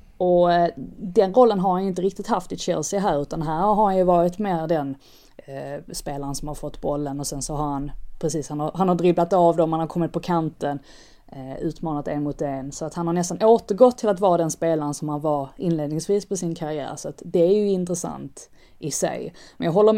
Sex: female